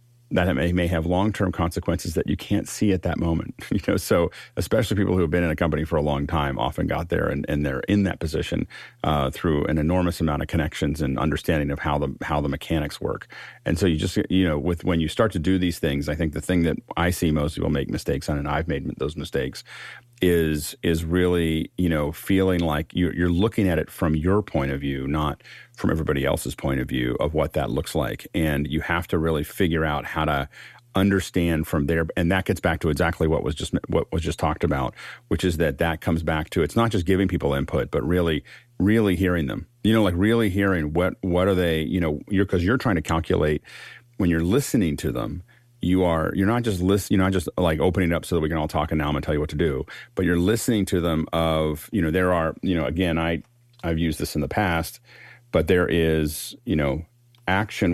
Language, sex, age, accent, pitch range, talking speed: English, male, 40-59, American, 80-95 Hz, 245 wpm